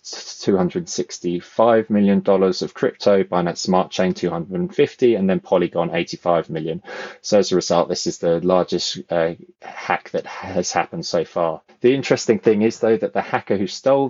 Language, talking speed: English, 165 wpm